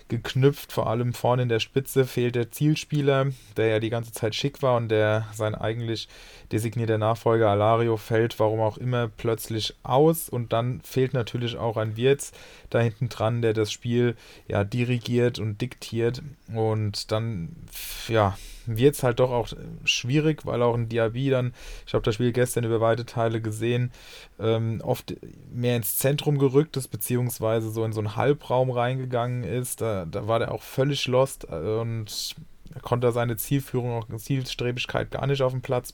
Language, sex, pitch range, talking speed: German, male, 105-120 Hz, 170 wpm